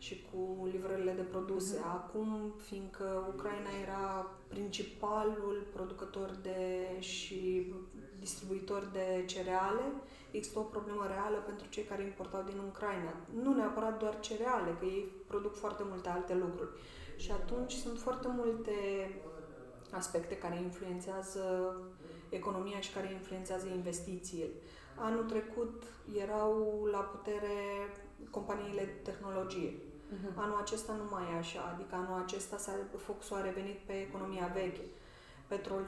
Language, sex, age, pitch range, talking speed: Romanian, female, 20-39, 185-210 Hz, 120 wpm